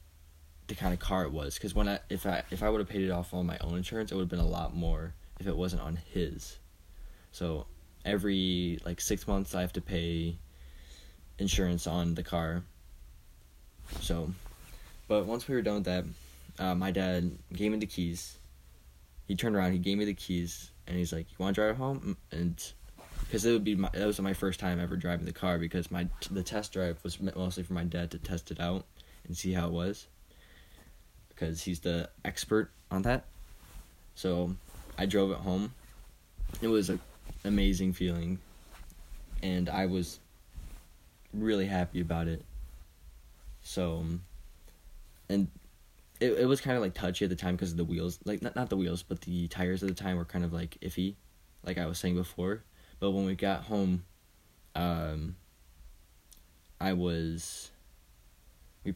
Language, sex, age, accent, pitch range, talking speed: English, male, 10-29, American, 80-95 Hz, 185 wpm